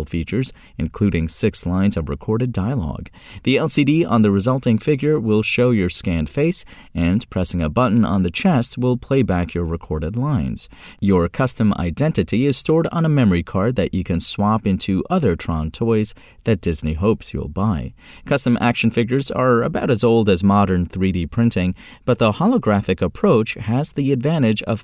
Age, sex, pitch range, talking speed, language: 30-49, male, 90-130 Hz, 175 wpm, English